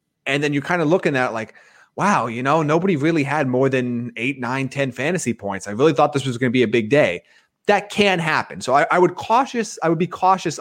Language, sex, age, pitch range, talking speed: English, male, 30-49, 125-165 Hz, 255 wpm